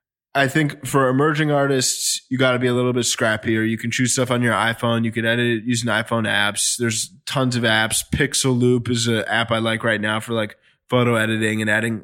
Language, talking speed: English, 230 wpm